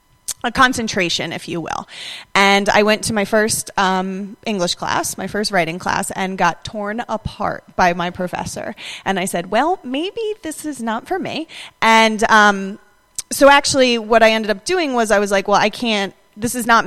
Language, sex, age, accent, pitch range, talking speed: English, female, 30-49, American, 185-225 Hz, 190 wpm